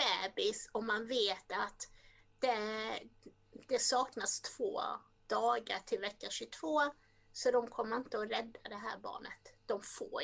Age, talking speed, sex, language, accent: 30-49, 135 wpm, female, Swedish, native